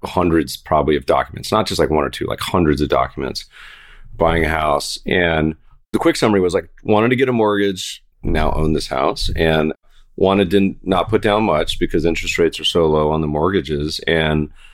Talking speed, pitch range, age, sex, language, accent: 200 wpm, 80-115 Hz, 30-49, male, English, American